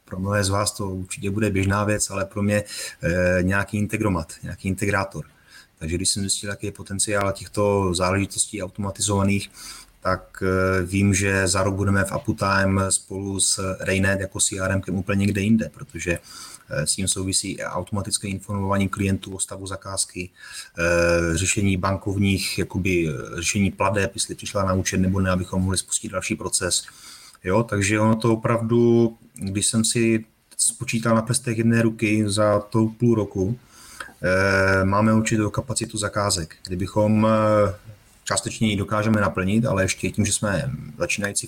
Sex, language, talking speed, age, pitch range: male, Czech, 150 wpm, 30-49, 95-110 Hz